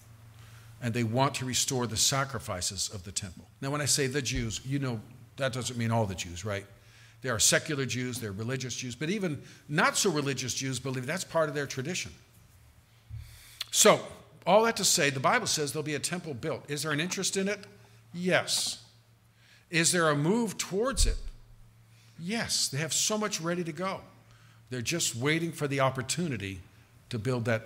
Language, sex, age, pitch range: English, male, 50-69, 115-155 Hz